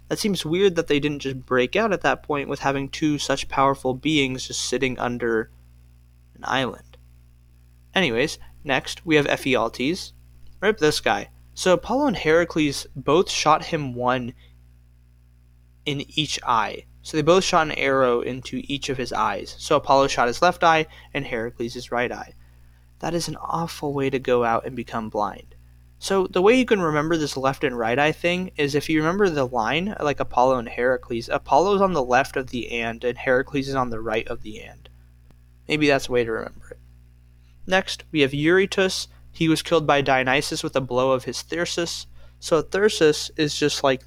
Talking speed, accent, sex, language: 190 wpm, American, male, English